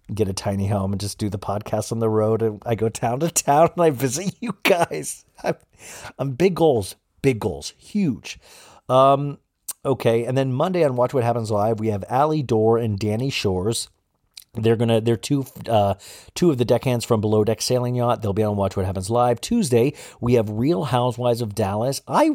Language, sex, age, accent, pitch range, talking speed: English, male, 40-59, American, 100-130 Hz, 200 wpm